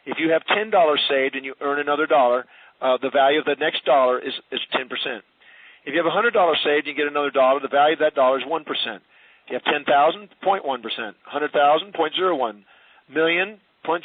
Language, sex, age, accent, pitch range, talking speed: English, male, 50-69, American, 140-185 Hz, 185 wpm